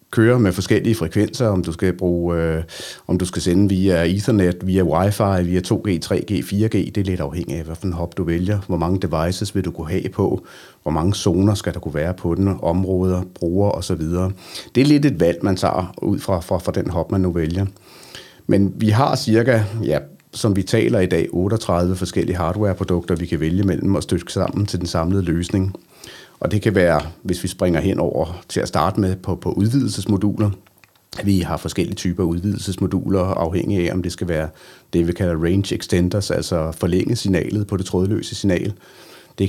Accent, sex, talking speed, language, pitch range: native, male, 200 wpm, Danish, 85-100 Hz